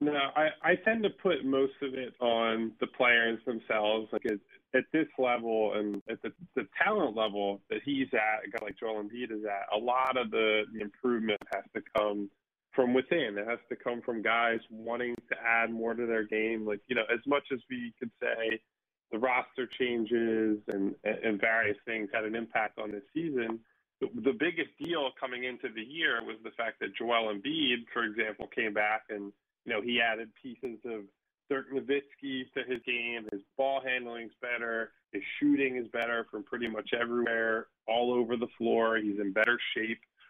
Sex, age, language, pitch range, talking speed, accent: male, 20-39, English, 110-130 Hz, 195 wpm, American